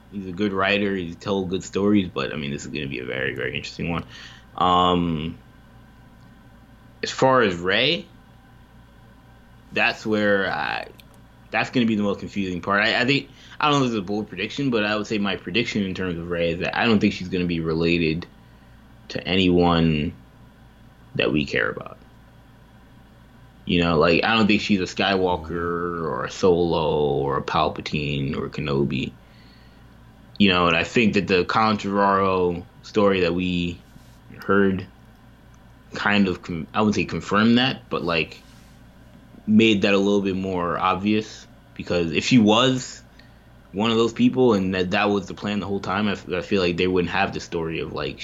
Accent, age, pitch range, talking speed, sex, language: American, 20-39, 85-105 Hz, 185 wpm, male, English